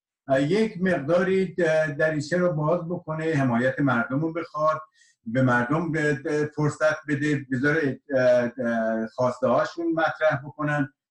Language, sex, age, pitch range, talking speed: Persian, male, 50-69, 110-155 Hz, 95 wpm